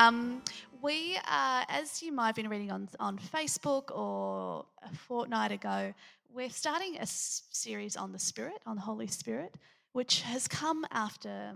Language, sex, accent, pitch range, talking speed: English, female, Australian, 185-235 Hz, 165 wpm